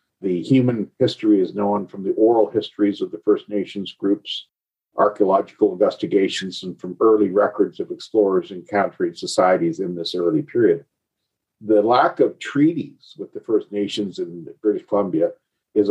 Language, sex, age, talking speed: English, male, 50-69, 150 wpm